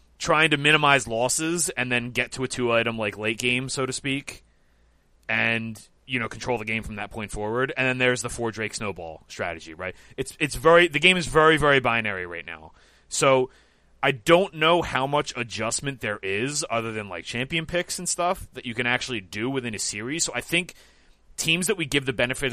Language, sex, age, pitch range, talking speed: English, male, 30-49, 105-135 Hz, 215 wpm